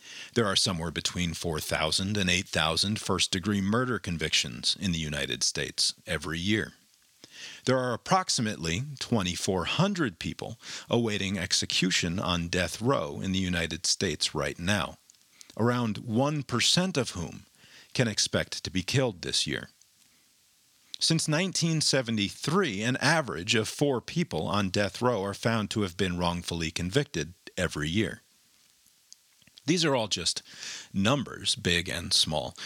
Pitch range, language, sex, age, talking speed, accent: 90-130 Hz, English, male, 40-59, 130 wpm, American